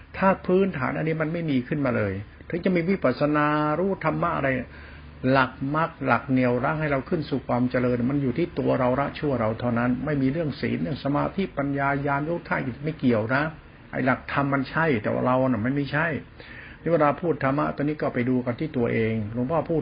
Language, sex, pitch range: Thai, male, 125-155 Hz